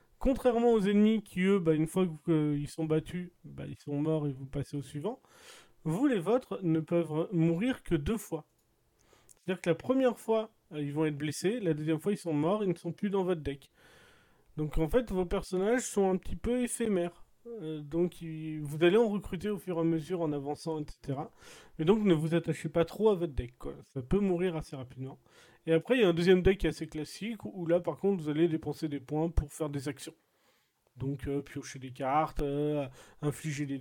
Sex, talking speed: male, 220 wpm